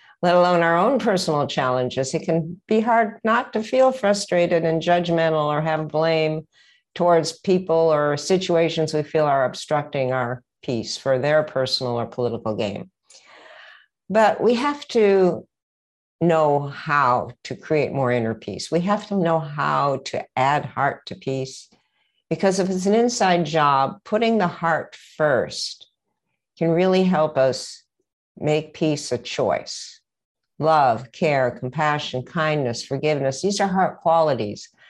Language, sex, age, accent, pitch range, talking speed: English, female, 60-79, American, 135-185 Hz, 145 wpm